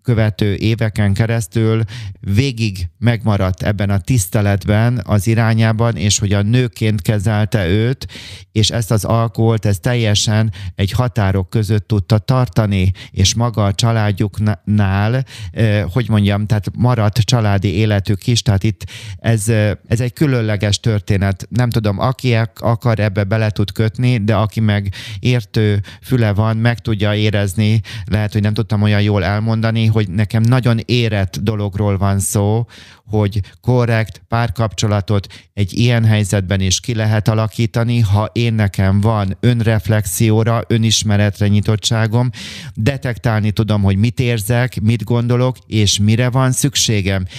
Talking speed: 135 wpm